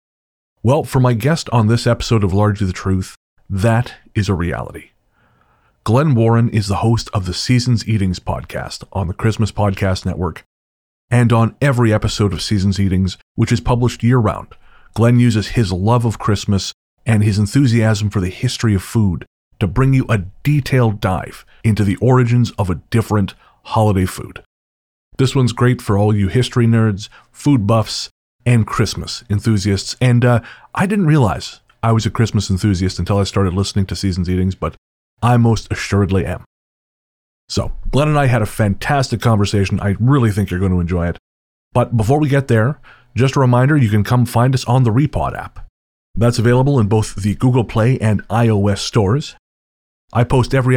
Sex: male